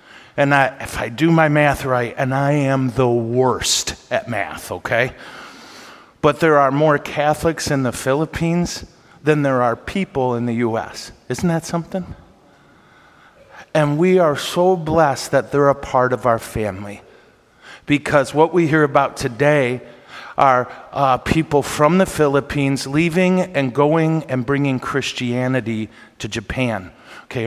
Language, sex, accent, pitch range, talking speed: English, male, American, 125-165 Hz, 145 wpm